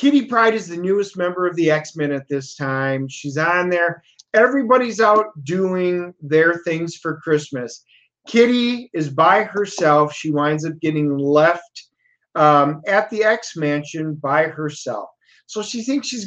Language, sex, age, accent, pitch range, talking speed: English, male, 30-49, American, 150-185 Hz, 150 wpm